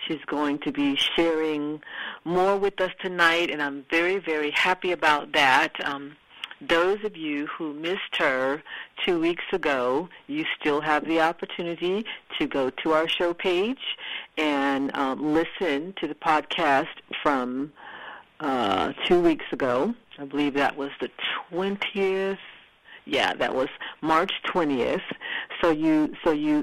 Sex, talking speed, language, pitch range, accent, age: female, 140 wpm, English, 145-200 Hz, American, 50-69